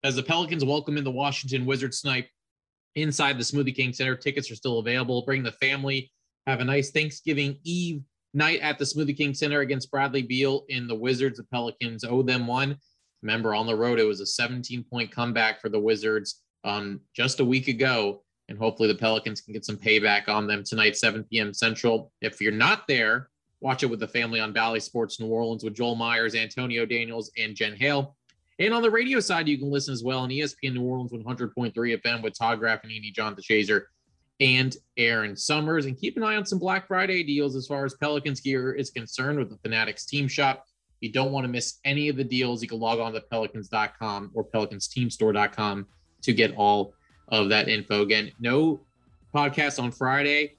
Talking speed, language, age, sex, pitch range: 200 wpm, English, 30-49, male, 110-140 Hz